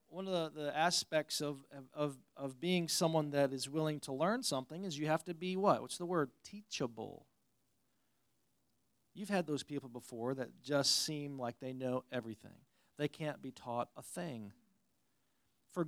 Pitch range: 135-170 Hz